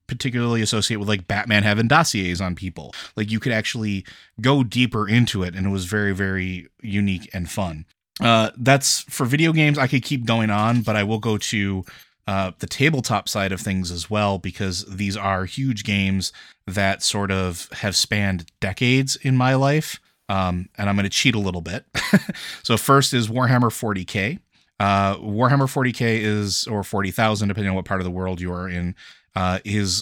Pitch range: 95-115 Hz